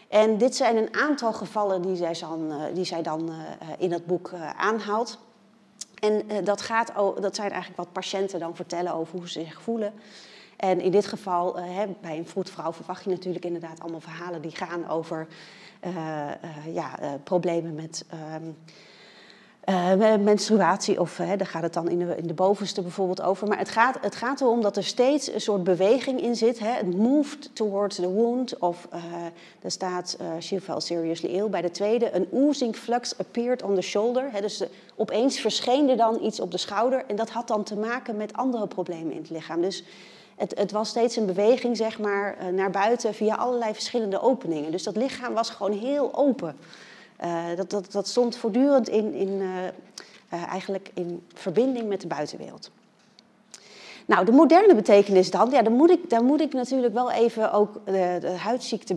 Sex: female